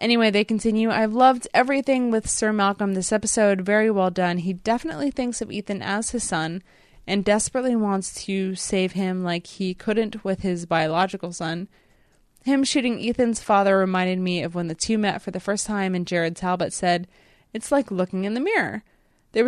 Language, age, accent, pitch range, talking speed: English, 20-39, American, 190-235 Hz, 190 wpm